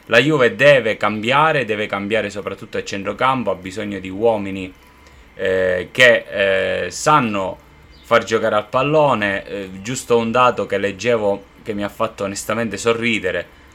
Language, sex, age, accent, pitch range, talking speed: Italian, male, 20-39, native, 100-115 Hz, 145 wpm